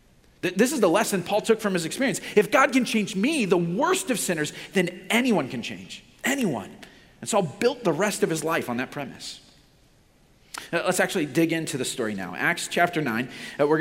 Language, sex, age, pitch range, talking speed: English, male, 40-59, 145-200 Hz, 195 wpm